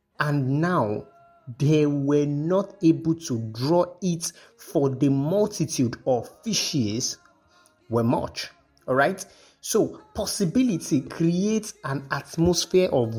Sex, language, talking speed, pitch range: male, English, 105 wpm, 125-170 Hz